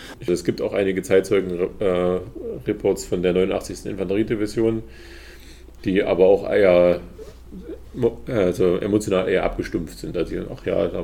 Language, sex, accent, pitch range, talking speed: German, male, German, 85-105 Hz, 125 wpm